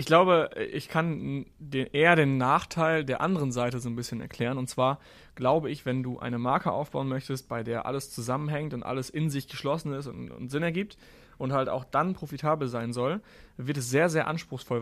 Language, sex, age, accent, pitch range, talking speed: German, male, 30-49, German, 130-160 Hz, 205 wpm